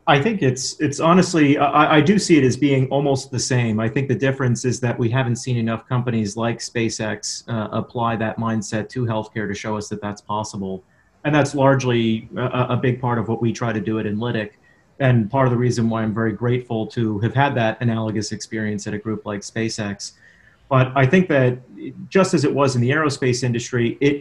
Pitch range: 110-130 Hz